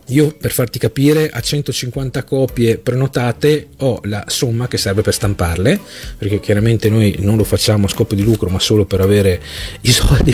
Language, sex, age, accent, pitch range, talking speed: Italian, male, 40-59, native, 105-130 Hz, 180 wpm